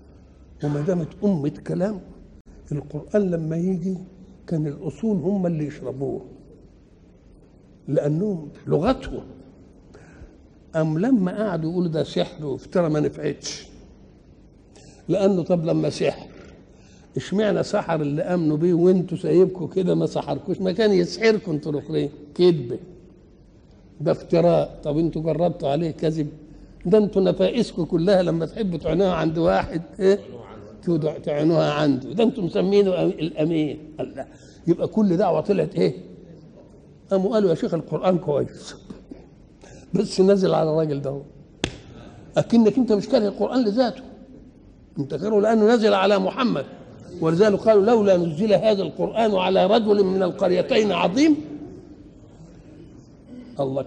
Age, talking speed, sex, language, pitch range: 60-79, 120 wpm, male, Arabic, 155-205 Hz